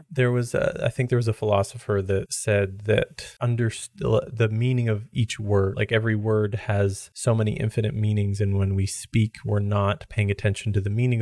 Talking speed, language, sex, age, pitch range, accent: 200 wpm, English, male, 20-39, 100-115 Hz, American